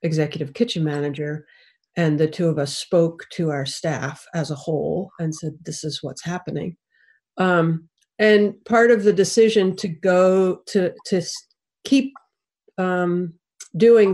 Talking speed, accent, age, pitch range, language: 145 wpm, American, 50-69, 170-210 Hz, English